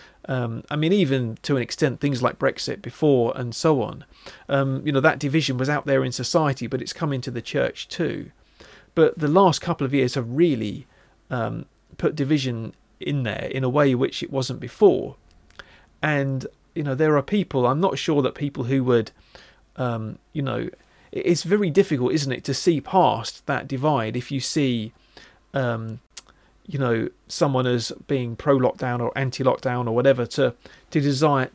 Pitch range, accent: 125-150 Hz, British